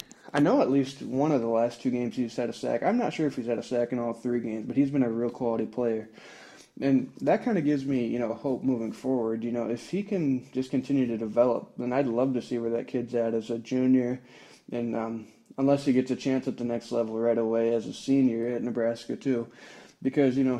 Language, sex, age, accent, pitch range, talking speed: English, male, 20-39, American, 115-135 Hz, 255 wpm